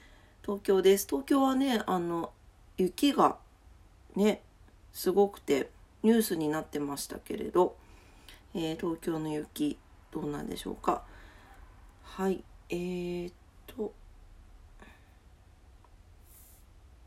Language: Japanese